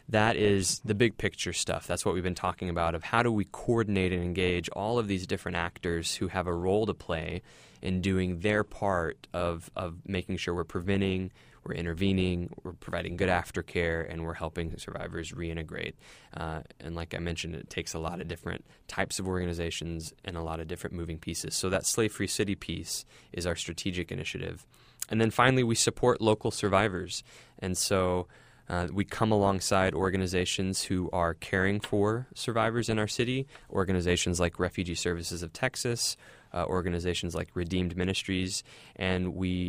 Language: English